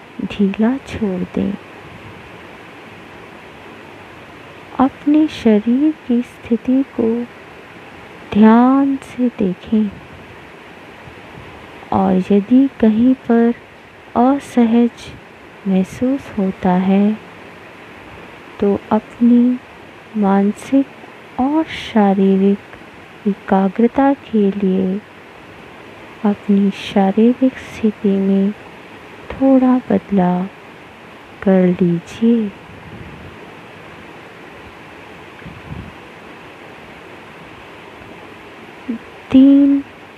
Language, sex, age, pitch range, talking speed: Hindi, female, 20-39, 200-245 Hz, 55 wpm